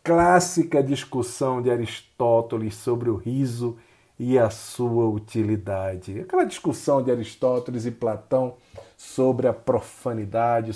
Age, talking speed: 40-59, 110 wpm